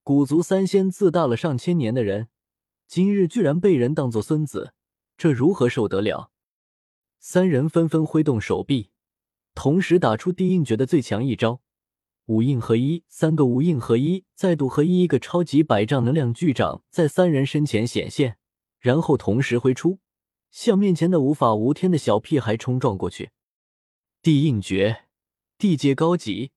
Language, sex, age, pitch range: Chinese, male, 20-39, 115-165 Hz